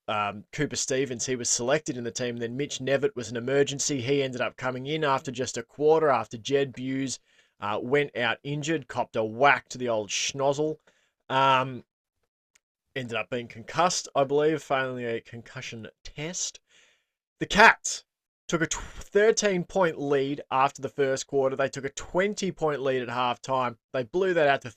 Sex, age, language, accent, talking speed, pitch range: male, 20-39, English, Australian, 175 wpm, 125-155 Hz